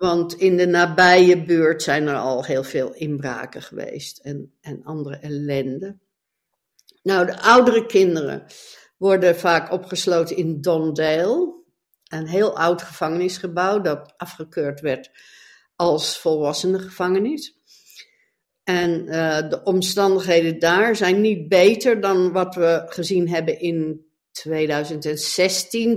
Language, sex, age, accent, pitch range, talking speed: Dutch, female, 60-79, Dutch, 150-185 Hz, 115 wpm